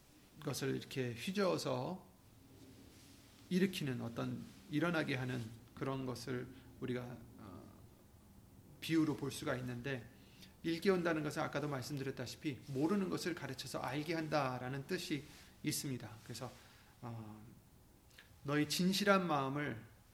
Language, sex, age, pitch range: Korean, male, 30-49, 115-160 Hz